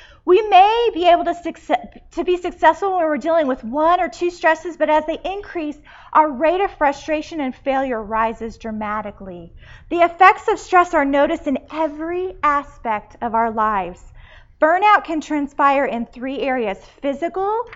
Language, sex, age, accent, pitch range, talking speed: English, female, 30-49, American, 250-350 Hz, 160 wpm